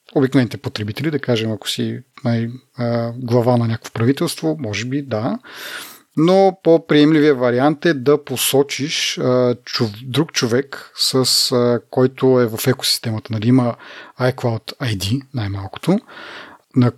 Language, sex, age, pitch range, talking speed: Bulgarian, male, 30-49, 120-145 Hz, 115 wpm